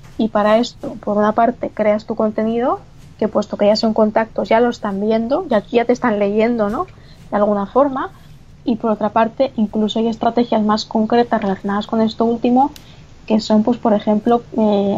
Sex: female